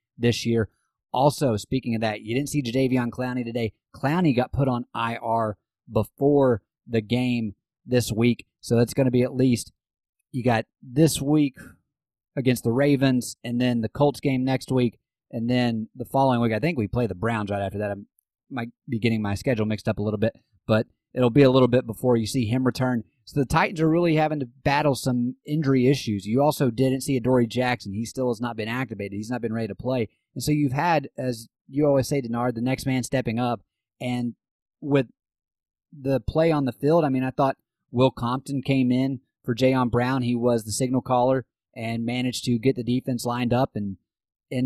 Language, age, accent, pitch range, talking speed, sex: English, 30-49, American, 115-135 Hz, 210 wpm, male